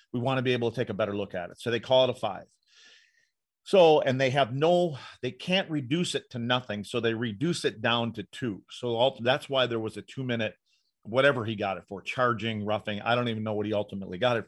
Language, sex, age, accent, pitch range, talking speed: English, male, 40-59, American, 110-140 Hz, 250 wpm